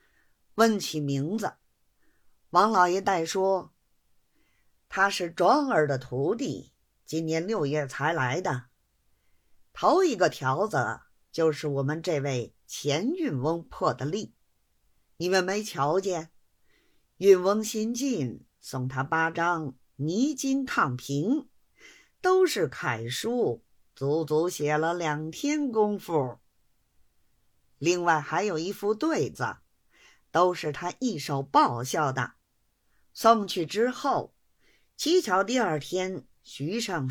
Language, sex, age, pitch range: Chinese, female, 50-69, 140-200 Hz